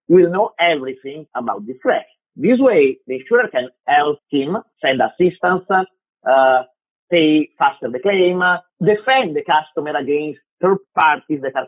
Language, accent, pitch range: English, Italian, 150-220 Hz